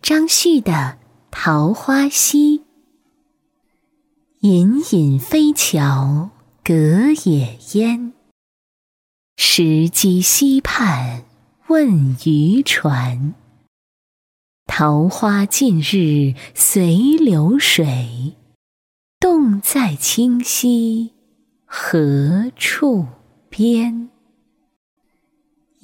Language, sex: Chinese, female